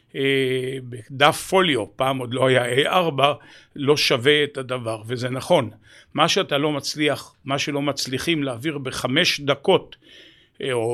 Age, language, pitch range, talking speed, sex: 50-69, Hebrew, 135-165 Hz, 130 wpm, male